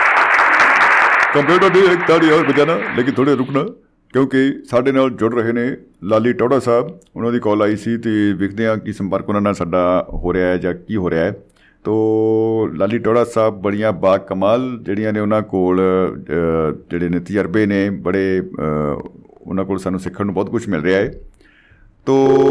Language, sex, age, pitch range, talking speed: Punjabi, male, 50-69, 100-130 Hz, 175 wpm